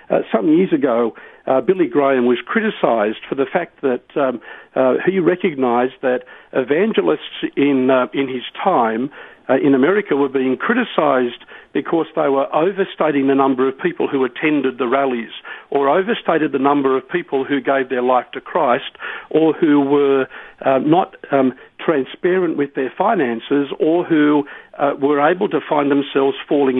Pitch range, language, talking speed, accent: 135-180 Hz, English, 165 wpm, Australian